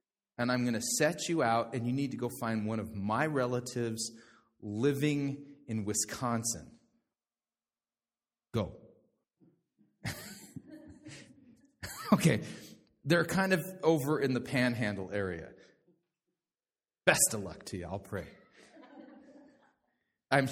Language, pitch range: English, 115-170 Hz